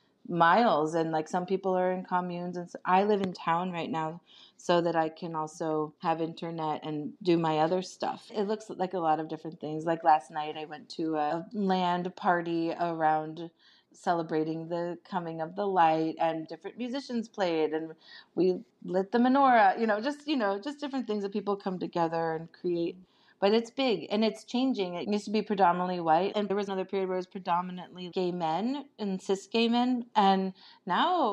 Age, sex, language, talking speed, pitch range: 30-49, female, English, 195 wpm, 165-200 Hz